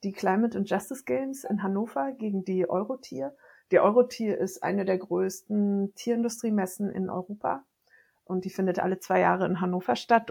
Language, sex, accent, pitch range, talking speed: German, female, German, 190-225 Hz, 165 wpm